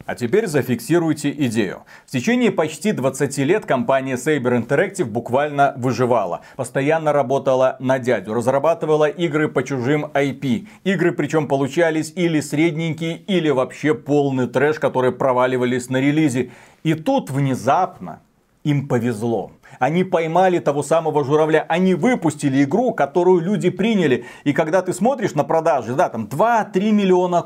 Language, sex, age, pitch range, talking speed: Russian, male, 40-59, 140-180 Hz, 135 wpm